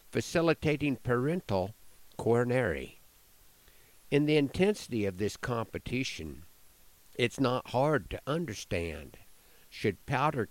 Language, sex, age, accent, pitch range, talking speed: English, male, 50-69, American, 100-130 Hz, 90 wpm